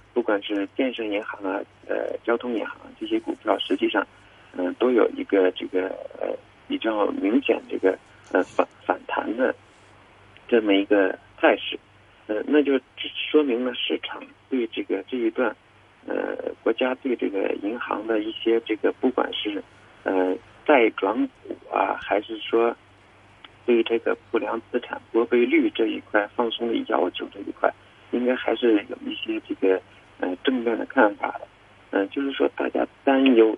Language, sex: Chinese, male